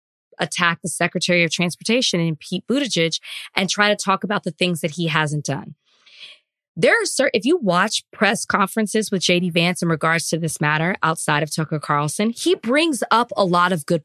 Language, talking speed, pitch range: English, 195 wpm, 175-230 Hz